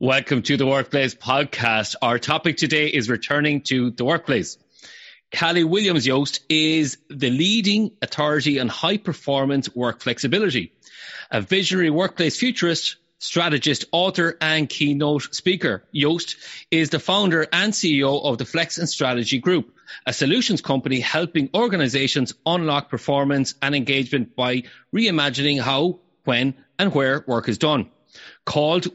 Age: 30-49